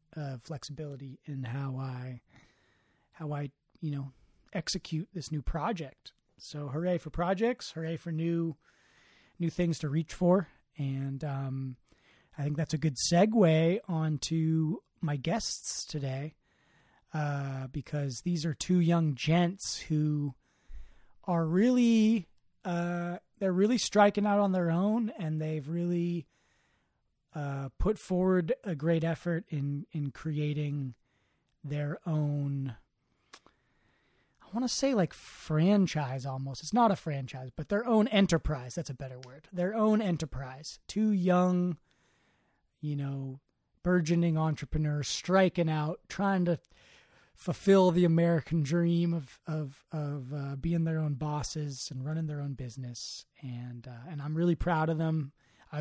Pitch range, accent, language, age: 140-175 Hz, American, English, 30-49